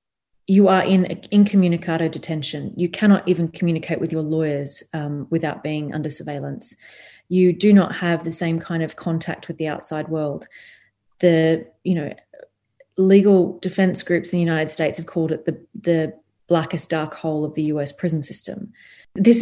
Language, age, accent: English, 30-49, Australian